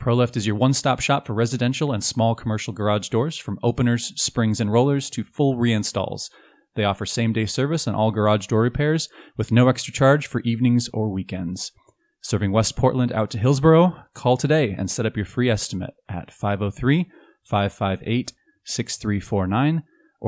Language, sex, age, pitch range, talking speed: English, male, 30-49, 105-130 Hz, 155 wpm